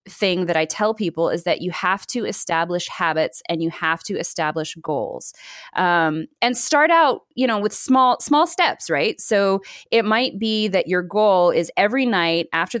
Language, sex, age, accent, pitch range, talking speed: English, female, 20-39, American, 165-230 Hz, 185 wpm